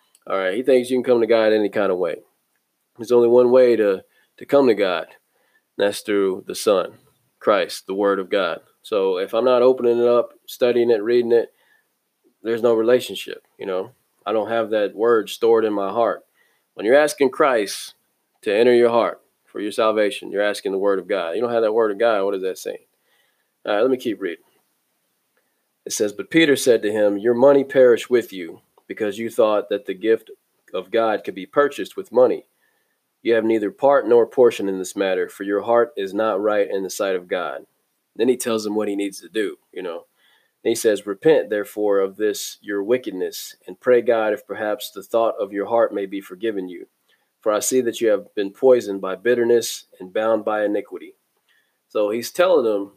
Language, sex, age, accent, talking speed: English, male, 20-39, American, 215 wpm